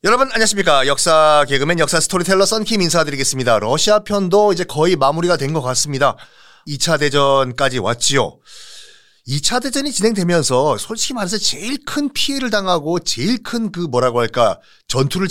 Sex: male